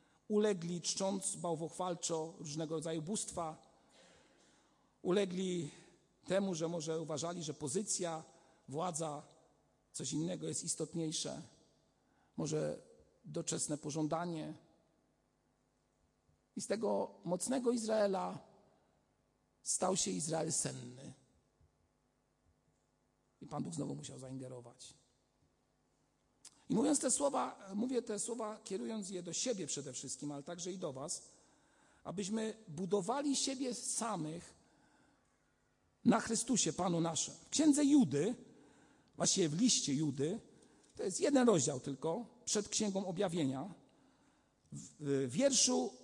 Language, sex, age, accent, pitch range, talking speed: Polish, male, 50-69, native, 155-225 Hz, 105 wpm